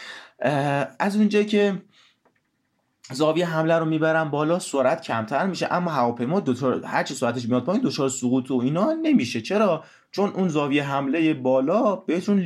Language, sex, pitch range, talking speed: Persian, male, 110-150 Hz, 145 wpm